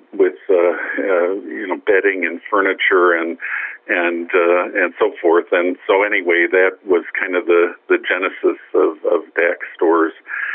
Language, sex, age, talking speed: English, male, 50-69, 160 wpm